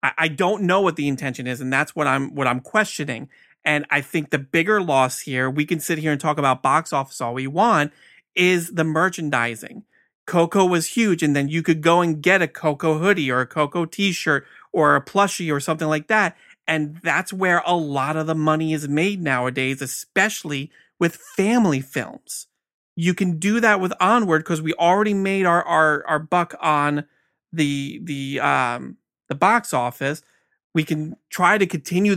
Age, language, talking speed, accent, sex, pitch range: 30-49, English, 190 wpm, American, male, 145-185 Hz